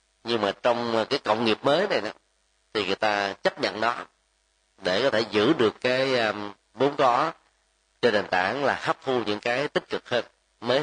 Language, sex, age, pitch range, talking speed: Vietnamese, male, 30-49, 105-140 Hz, 190 wpm